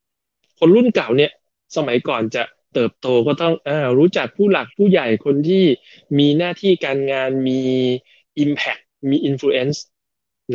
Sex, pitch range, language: male, 125-165 Hz, Thai